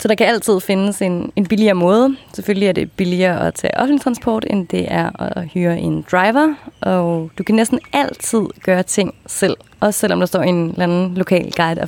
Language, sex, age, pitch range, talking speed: Danish, female, 20-39, 170-205 Hz, 210 wpm